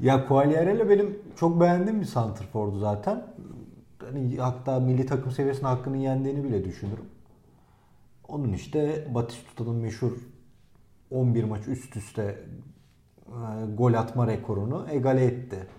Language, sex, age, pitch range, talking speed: Turkish, male, 40-59, 110-140 Hz, 110 wpm